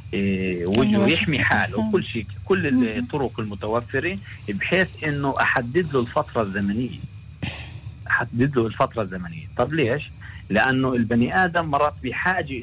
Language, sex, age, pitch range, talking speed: Hebrew, male, 50-69, 100-135 Hz, 110 wpm